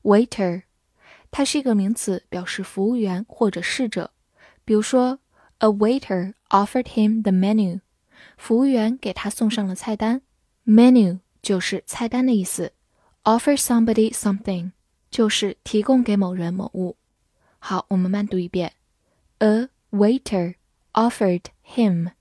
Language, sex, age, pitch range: Chinese, female, 10-29, 190-230 Hz